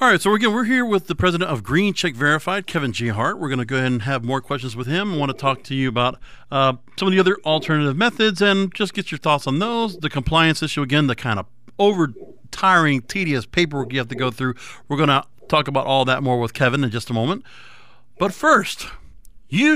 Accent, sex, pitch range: American, male, 135-185 Hz